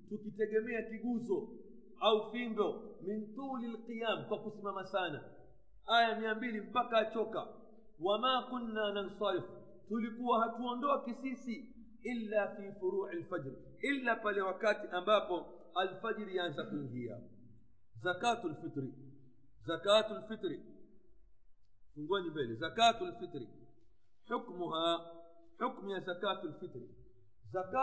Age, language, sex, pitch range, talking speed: 50-69, Swahili, male, 165-215 Hz, 85 wpm